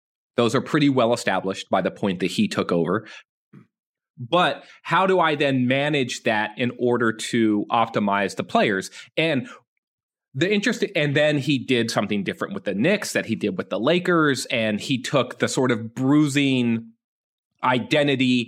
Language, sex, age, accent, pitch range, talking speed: English, male, 30-49, American, 110-145 Hz, 165 wpm